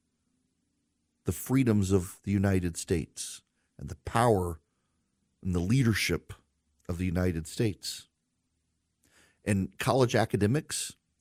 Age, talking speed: 40-59, 95 wpm